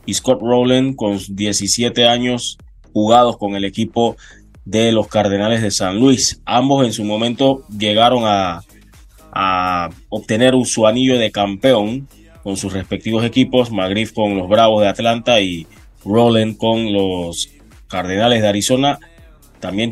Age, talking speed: 20-39, 140 wpm